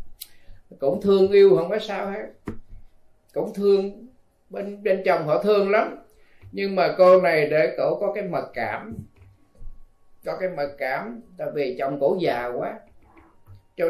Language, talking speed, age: Vietnamese, 155 wpm, 20-39